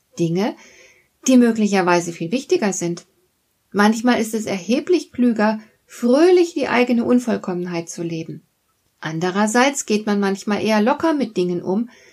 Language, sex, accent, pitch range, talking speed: German, female, German, 185-250 Hz, 130 wpm